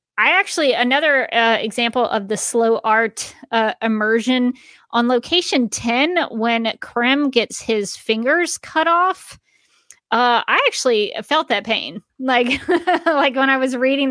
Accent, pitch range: American, 210-260 Hz